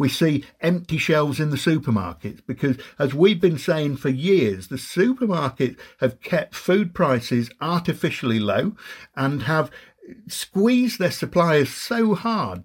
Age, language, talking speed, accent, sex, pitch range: 50-69, English, 140 wpm, British, male, 120-170 Hz